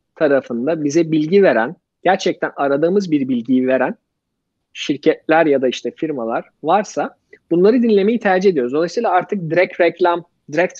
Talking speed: 135 wpm